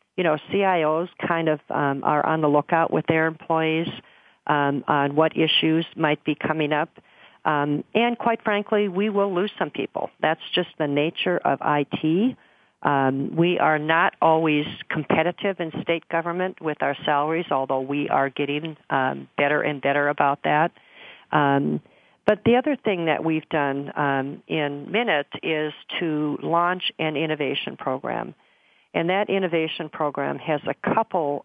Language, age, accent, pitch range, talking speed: English, 50-69, American, 145-170 Hz, 155 wpm